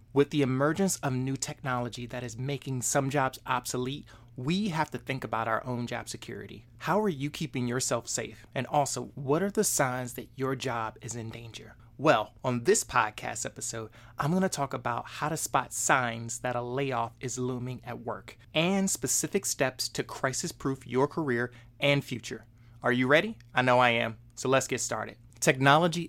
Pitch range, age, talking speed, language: 120-140 Hz, 30-49, 185 wpm, English